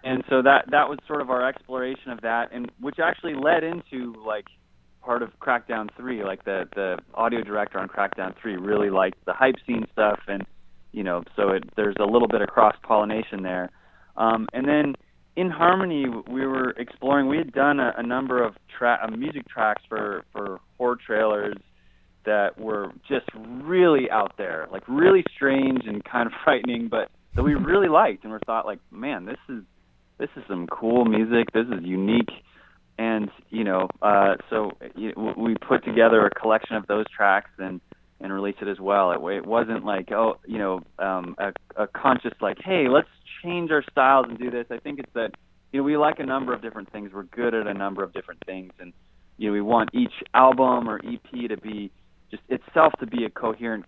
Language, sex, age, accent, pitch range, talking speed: English, male, 30-49, American, 100-130 Hz, 200 wpm